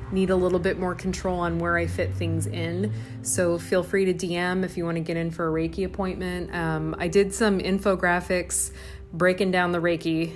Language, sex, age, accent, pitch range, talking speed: English, female, 30-49, American, 160-195 Hz, 210 wpm